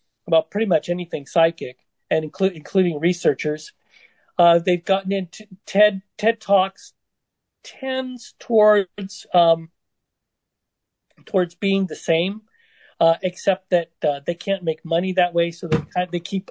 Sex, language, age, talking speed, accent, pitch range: male, English, 40-59, 135 wpm, American, 160-195 Hz